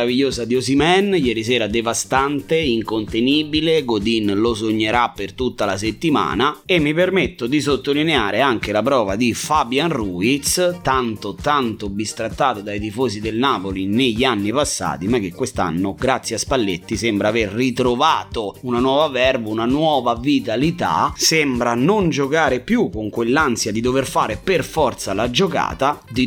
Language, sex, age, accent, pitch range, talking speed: Italian, male, 30-49, native, 110-140 Hz, 145 wpm